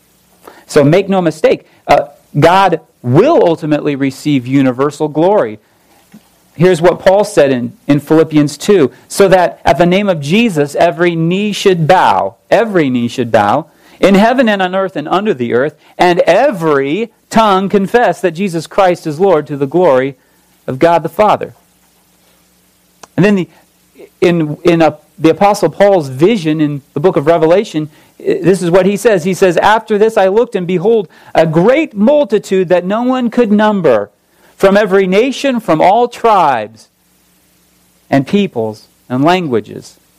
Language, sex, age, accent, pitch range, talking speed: English, male, 40-59, American, 155-205 Hz, 155 wpm